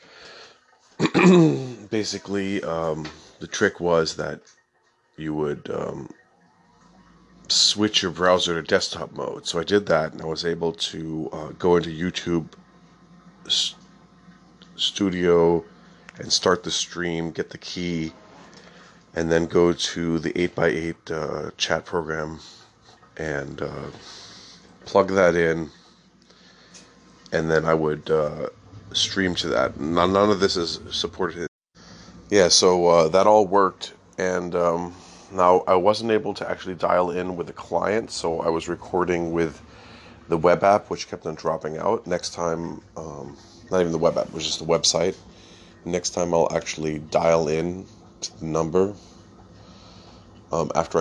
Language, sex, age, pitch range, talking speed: English, male, 30-49, 80-100 Hz, 140 wpm